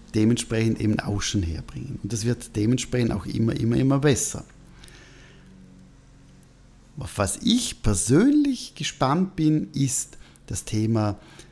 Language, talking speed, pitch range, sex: German, 120 wpm, 110-155 Hz, male